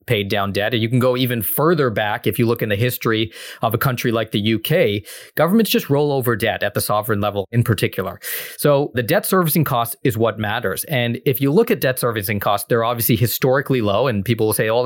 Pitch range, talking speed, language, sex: 110-140 Hz, 240 wpm, English, male